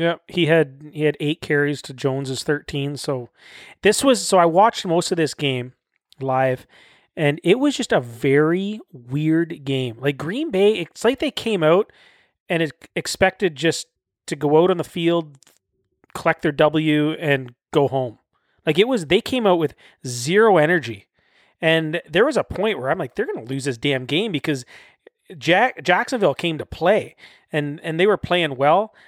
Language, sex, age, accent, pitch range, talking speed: English, male, 30-49, American, 140-175 Hz, 180 wpm